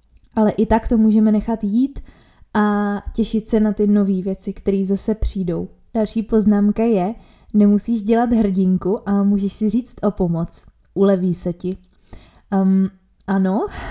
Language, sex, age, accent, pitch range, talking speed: Czech, female, 20-39, native, 190-210 Hz, 145 wpm